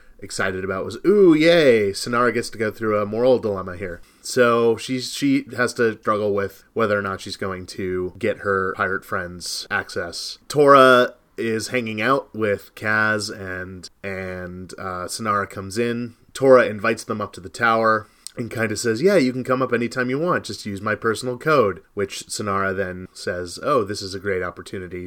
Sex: male